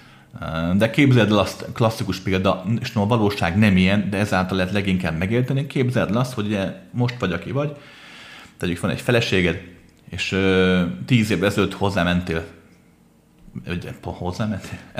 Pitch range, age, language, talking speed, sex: 95-130 Hz, 30-49, Hungarian, 150 wpm, male